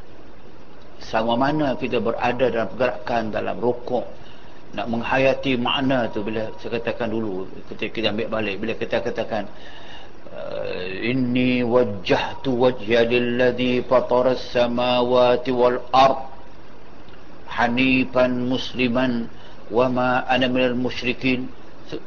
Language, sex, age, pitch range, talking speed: Malay, male, 60-79, 125-180 Hz, 105 wpm